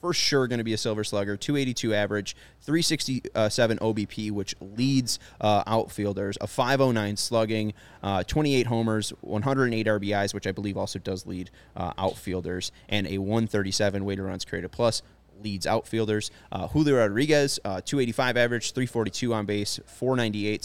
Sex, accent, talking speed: male, American, 150 wpm